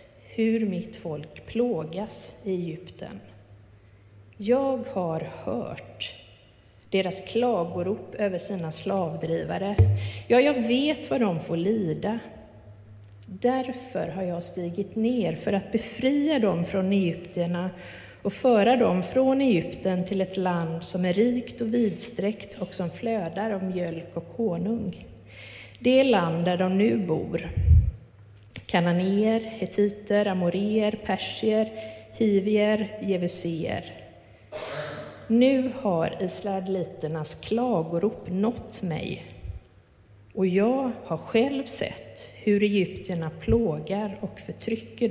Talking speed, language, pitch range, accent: 110 wpm, Swedish, 160-220 Hz, native